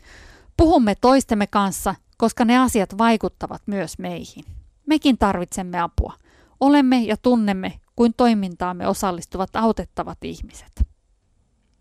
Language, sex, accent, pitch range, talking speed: Finnish, female, native, 185-235 Hz, 100 wpm